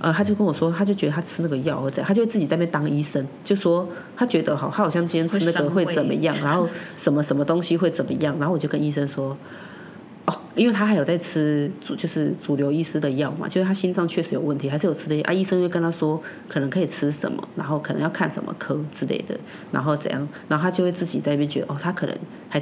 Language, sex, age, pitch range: Chinese, female, 30-49, 150-195 Hz